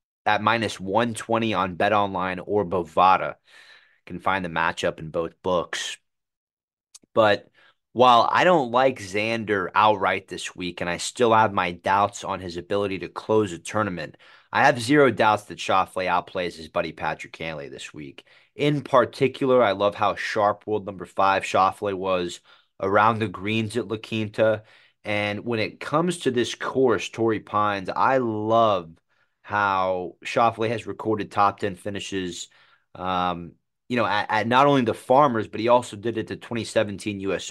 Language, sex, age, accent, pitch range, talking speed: English, male, 30-49, American, 95-115 Hz, 165 wpm